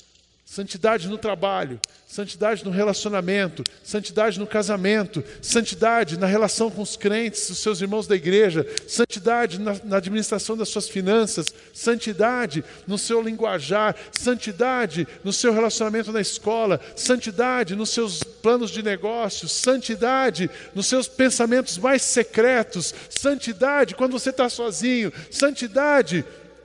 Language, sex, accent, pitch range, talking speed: Portuguese, male, Brazilian, 185-235 Hz, 120 wpm